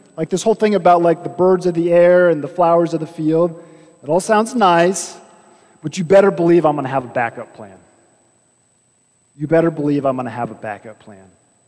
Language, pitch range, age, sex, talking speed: English, 135-195 Hz, 30-49, male, 215 wpm